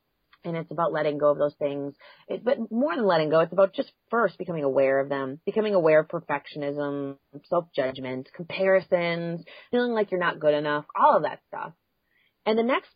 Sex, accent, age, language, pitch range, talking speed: female, American, 30-49, English, 150-200 Hz, 185 wpm